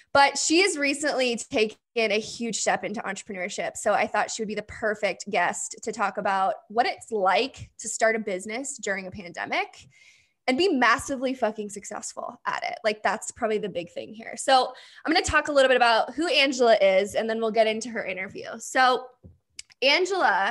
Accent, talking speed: American, 195 wpm